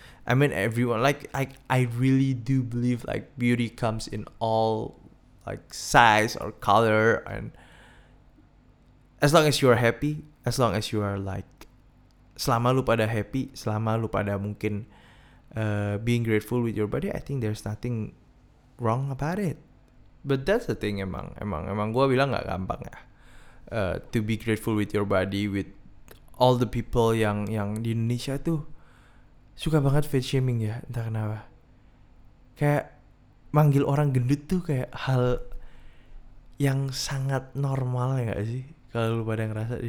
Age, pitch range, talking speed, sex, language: 20-39, 110-140 Hz, 160 wpm, male, Indonesian